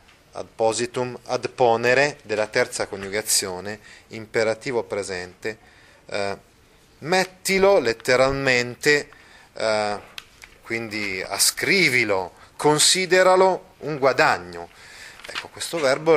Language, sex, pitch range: Italian, male, 100-140 Hz